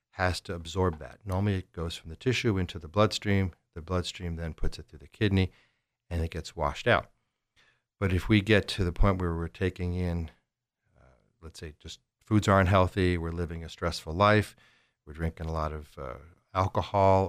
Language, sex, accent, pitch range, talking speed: English, male, American, 85-105 Hz, 195 wpm